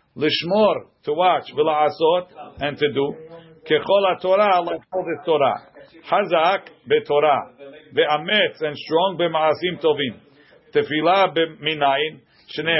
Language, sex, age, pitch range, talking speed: English, male, 50-69, 150-185 Hz, 115 wpm